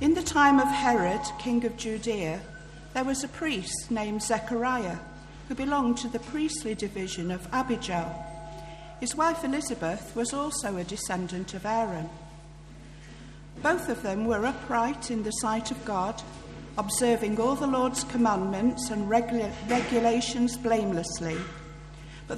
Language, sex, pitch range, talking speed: English, female, 190-255 Hz, 135 wpm